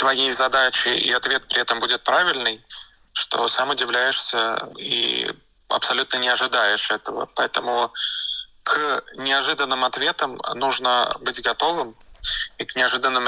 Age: 20-39